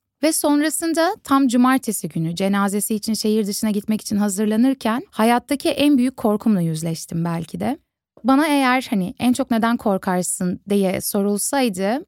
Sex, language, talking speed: female, Turkish, 140 wpm